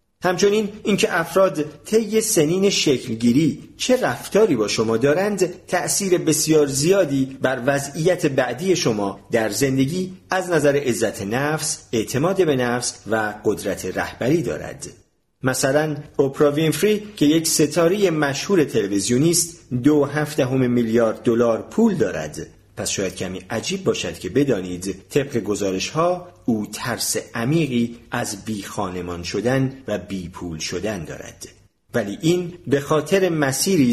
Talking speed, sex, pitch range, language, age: 130 wpm, male, 110-160 Hz, Persian, 40-59